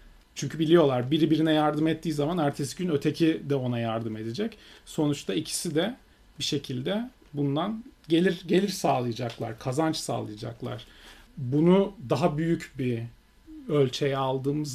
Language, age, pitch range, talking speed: Turkish, 40-59, 125-160 Hz, 125 wpm